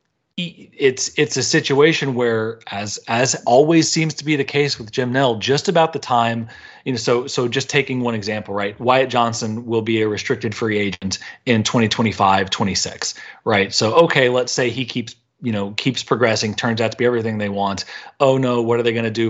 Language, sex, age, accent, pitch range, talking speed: English, male, 30-49, American, 105-125 Hz, 200 wpm